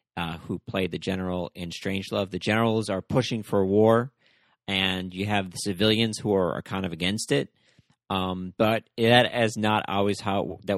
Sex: male